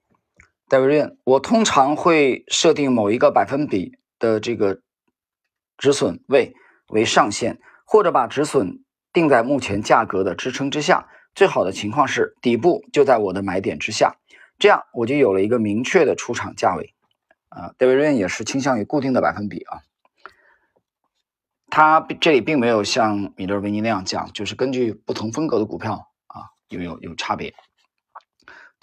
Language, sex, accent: Chinese, male, native